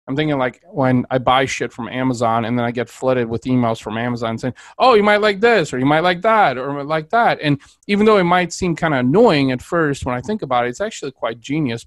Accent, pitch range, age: American, 120-150 Hz, 30-49